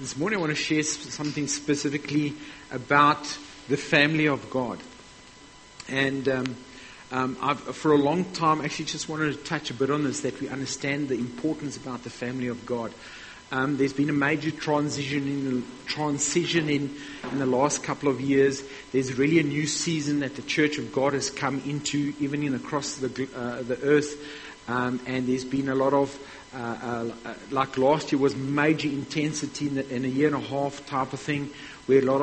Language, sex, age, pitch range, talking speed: English, male, 50-69, 135-150 Hz, 190 wpm